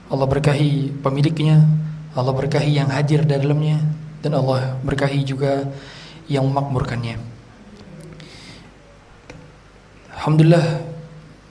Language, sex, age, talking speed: Indonesian, male, 20-39, 80 wpm